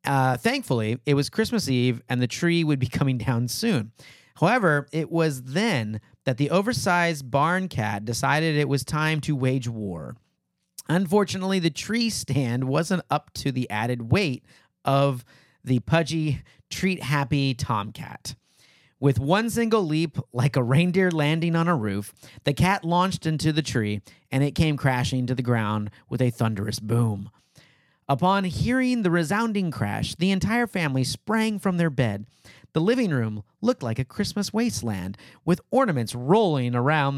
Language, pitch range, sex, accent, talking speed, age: English, 125-175 Hz, male, American, 155 wpm, 40-59